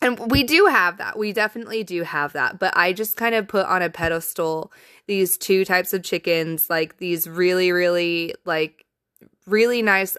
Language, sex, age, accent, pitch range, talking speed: English, female, 20-39, American, 165-205 Hz, 185 wpm